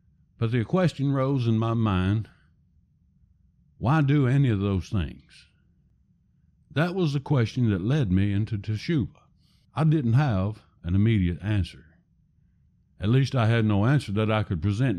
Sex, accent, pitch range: male, American, 95-125 Hz